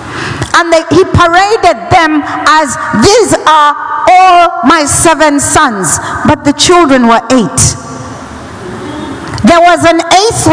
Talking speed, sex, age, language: 115 wpm, female, 50-69, Swedish